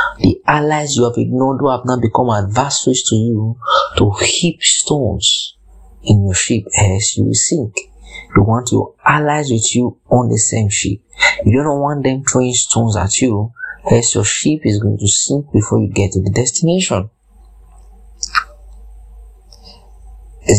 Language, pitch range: English, 100-130 Hz